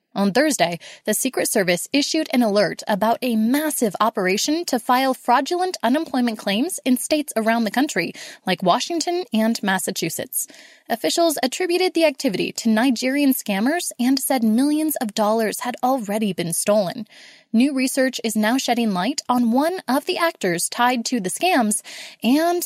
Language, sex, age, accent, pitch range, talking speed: English, female, 20-39, American, 225-305 Hz, 155 wpm